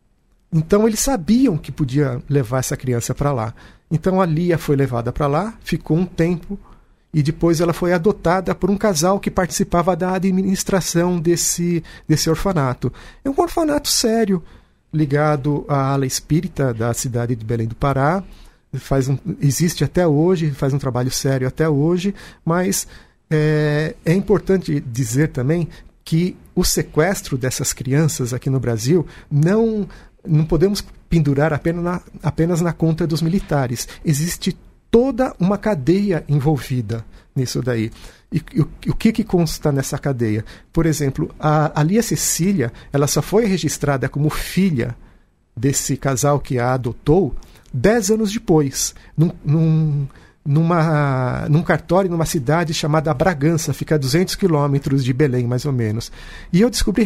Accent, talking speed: Brazilian, 145 wpm